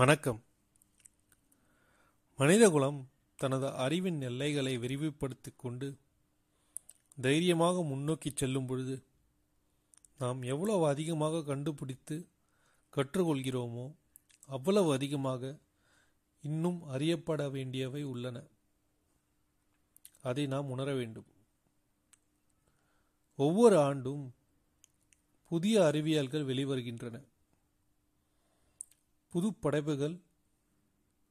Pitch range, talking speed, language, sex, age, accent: 130-150 Hz, 60 wpm, Tamil, male, 30-49, native